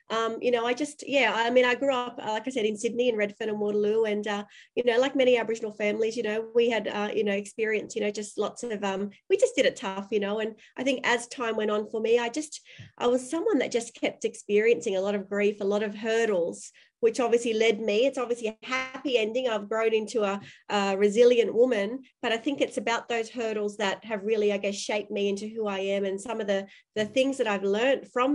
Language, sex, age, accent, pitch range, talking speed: English, female, 30-49, Australian, 205-245 Hz, 250 wpm